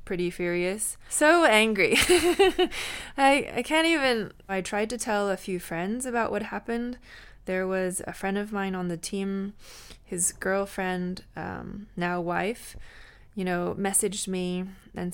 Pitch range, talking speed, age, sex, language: 180-220 Hz, 145 wpm, 20-39, female, English